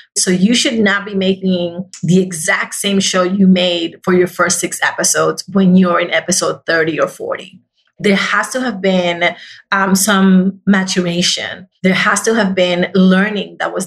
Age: 30-49